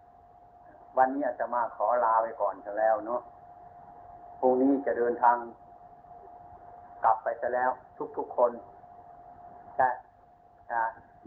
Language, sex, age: Thai, male, 60-79